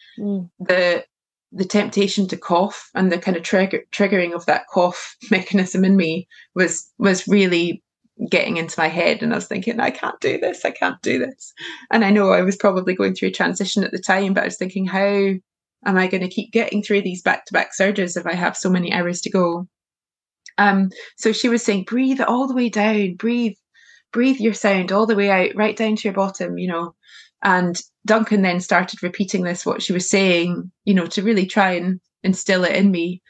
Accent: British